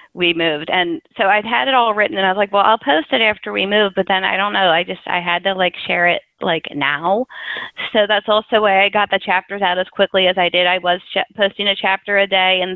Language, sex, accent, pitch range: English, female, American, 180-210 Hz